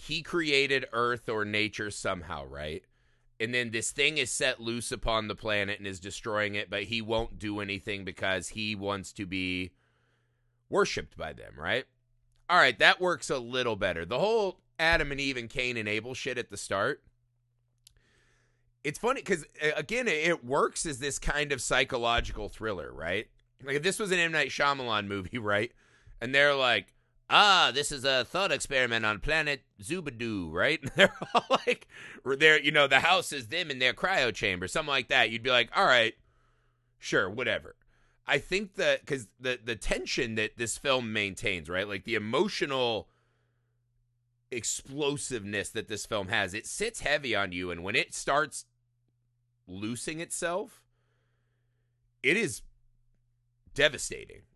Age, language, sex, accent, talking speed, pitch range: 30-49, English, male, American, 160 wpm, 110-135 Hz